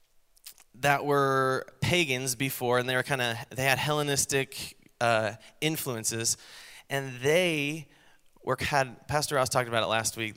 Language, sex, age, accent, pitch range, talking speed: English, male, 20-39, American, 120-150 Hz, 145 wpm